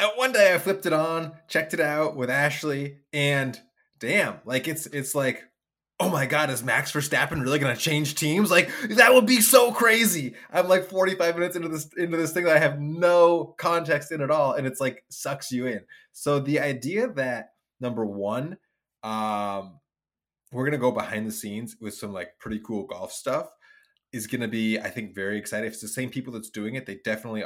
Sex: male